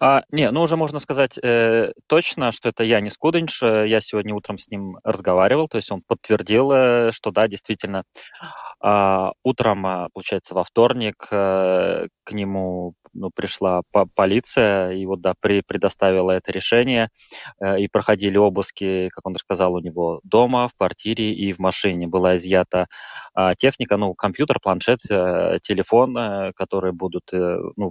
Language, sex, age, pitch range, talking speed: Russian, male, 20-39, 95-110 Hz, 140 wpm